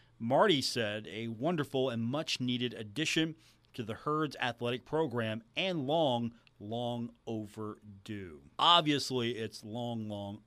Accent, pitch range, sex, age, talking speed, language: American, 110-130 Hz, male, 40-59, 120 wpm, English